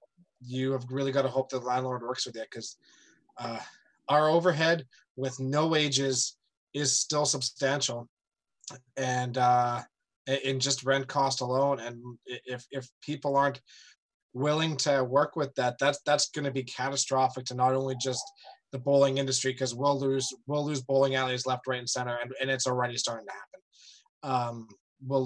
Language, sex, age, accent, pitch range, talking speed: English, male, 20-39, American, 130-150 Hz, 170 wpm